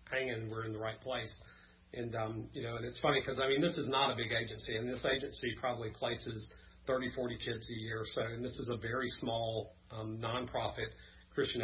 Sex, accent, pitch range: male, American, 110-130 Hz